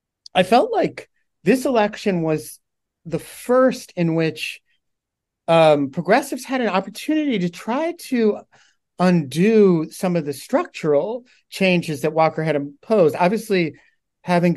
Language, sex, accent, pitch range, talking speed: English, male, American, 145-190 Hz, 125 wpm